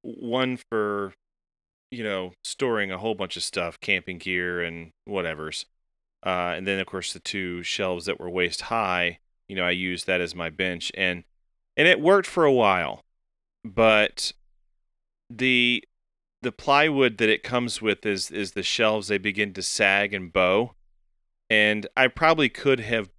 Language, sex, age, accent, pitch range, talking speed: English, male, 30-49, American, 90-110 Hz, 165 wpm